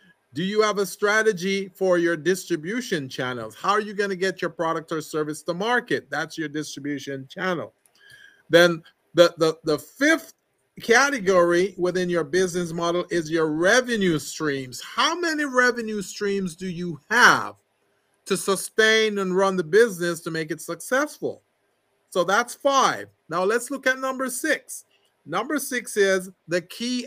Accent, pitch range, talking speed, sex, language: American, 165-235 Hz, 155 wpm, male, English